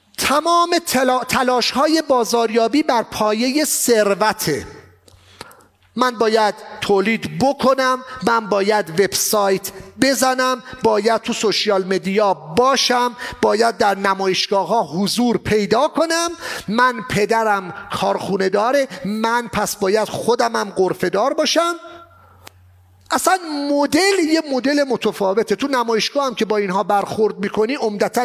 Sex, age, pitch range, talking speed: male, 40-59, 195-260 Hz, 115 wpm